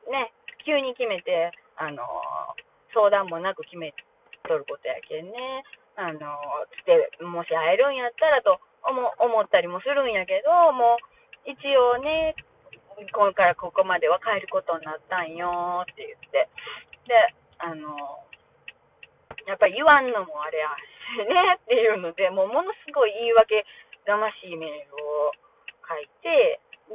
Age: 20-39